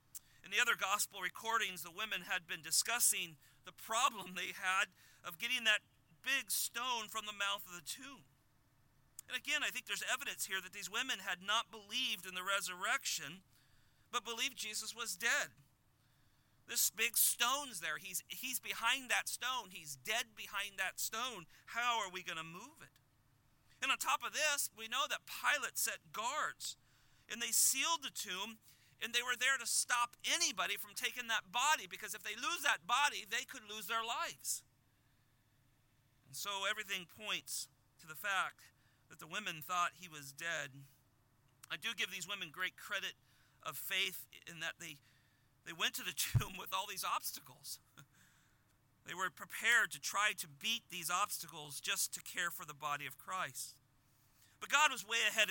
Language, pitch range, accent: English, 130-220 Hz, American